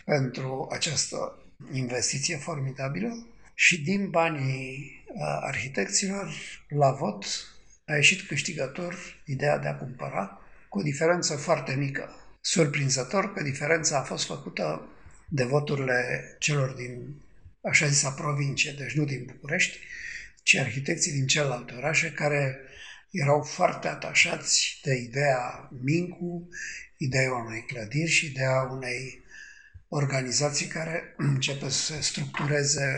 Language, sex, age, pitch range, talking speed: Romanian, male, 50-69, 135-165 Hz, 115 wpm